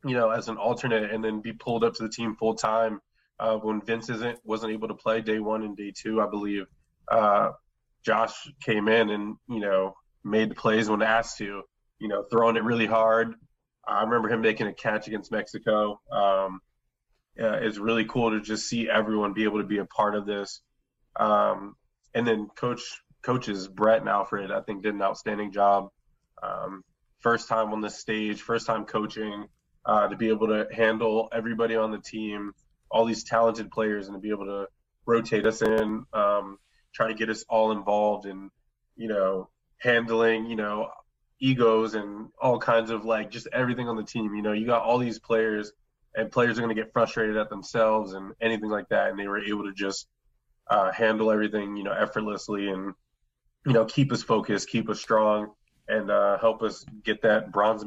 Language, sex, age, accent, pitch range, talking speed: English, male, 20-39, American, 105-115 Hz, 195 wpm